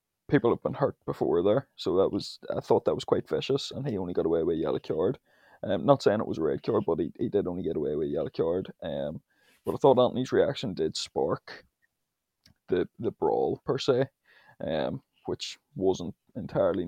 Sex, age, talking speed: male, 20-39, 210 wpm